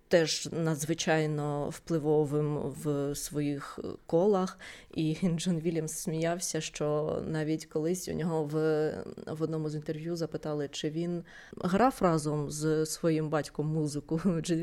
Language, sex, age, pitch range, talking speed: Ukrainian, female, 20-39, 150-180 Hz, 125 wpm